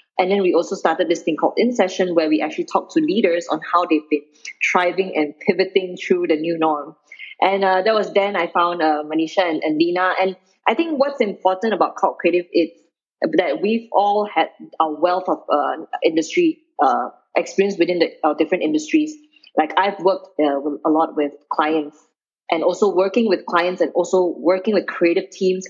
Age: 20-39